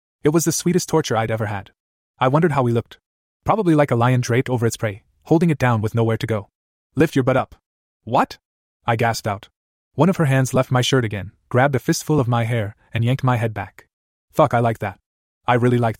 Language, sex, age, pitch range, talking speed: English, male, 20-39, 110-140 Hz, 235 wpm